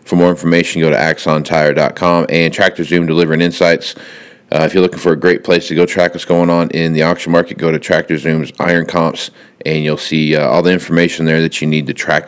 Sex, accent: male, American